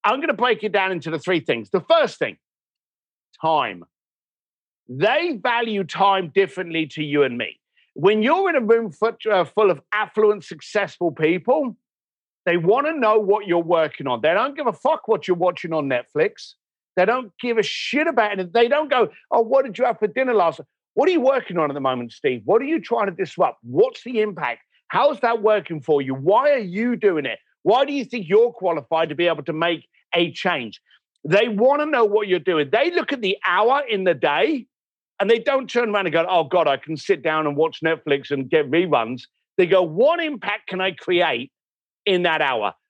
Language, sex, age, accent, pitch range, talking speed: English, male, 50-69, British, 155-240 Hz, 215 wpm